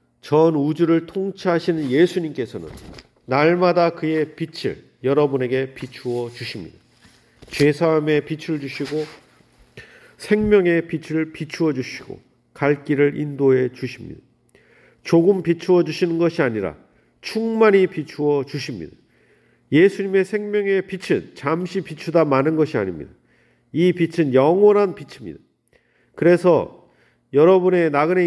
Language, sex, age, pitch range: Korean, male, 40-59, 130-170 Hz